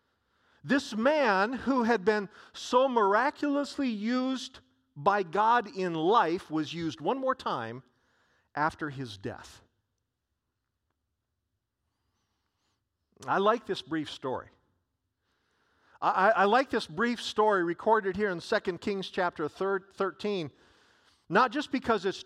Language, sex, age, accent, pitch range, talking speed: English, male, 50-69, American, 140-225 Hz, 115 wpm